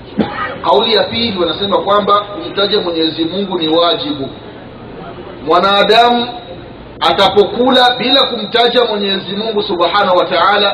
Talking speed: 100 wpm